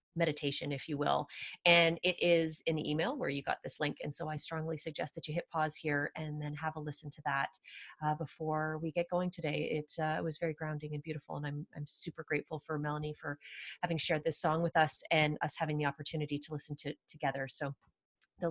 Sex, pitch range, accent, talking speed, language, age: female, 150-195 Hz, American, 230 wpm, English, 30-49